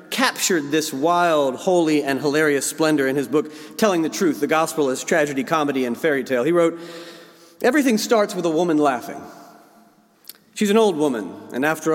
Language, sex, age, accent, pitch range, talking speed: English, male, 40-59, American, 150-210 Hz, 175 wpm